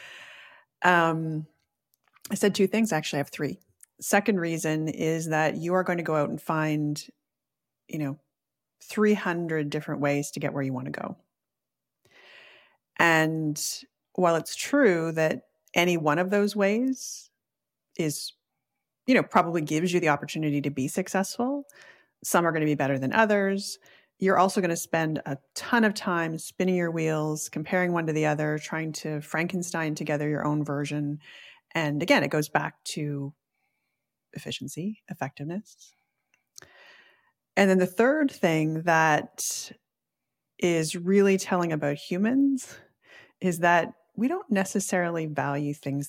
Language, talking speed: English, 145 wpm